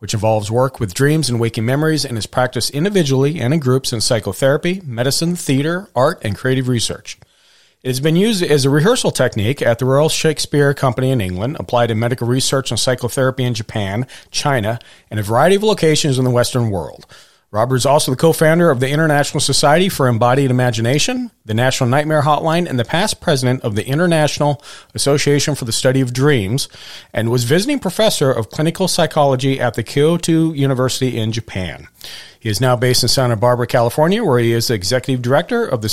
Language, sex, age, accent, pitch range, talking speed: English, male, 40-59, American, 120-155 Hz, 190 wpm